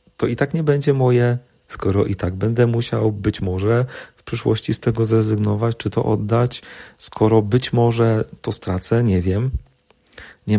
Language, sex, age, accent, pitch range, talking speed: Polish, male, 40-59, native, 100-130 Hz, 165 wpm